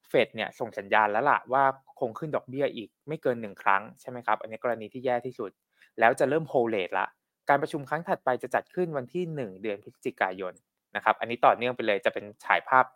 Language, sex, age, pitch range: Thai, male, 20-39, 115-150 Hz